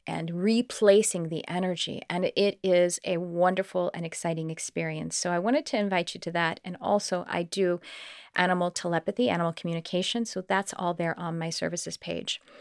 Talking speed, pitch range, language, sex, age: 170 wpm, 170-200 Hz, English, female, 30-49